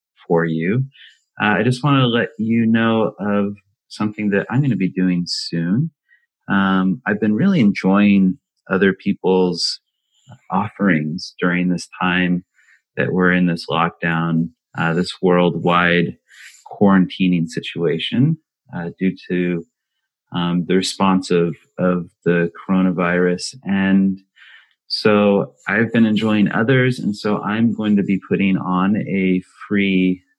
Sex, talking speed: male, 130 wpm